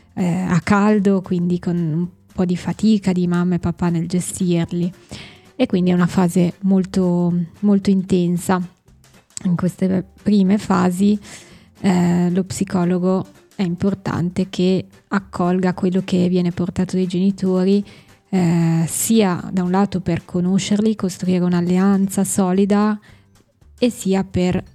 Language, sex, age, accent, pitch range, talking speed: Italian, female, 20-39, native, 180-195 Hz, 125 wpm